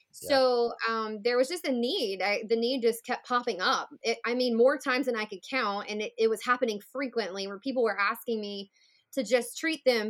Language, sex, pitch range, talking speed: English, female, 220-255 Hz, 215 wpm